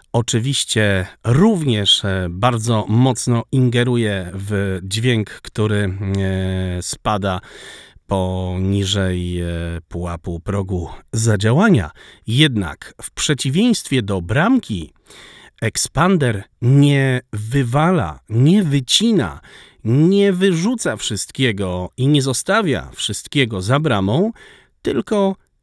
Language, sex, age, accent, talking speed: Polish, male, 40-59, native, 75 wpm